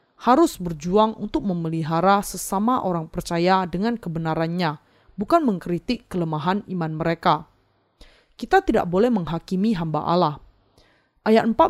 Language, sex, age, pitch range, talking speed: Indonesian, female, 20-39, 170-225 Hz, 110 wpm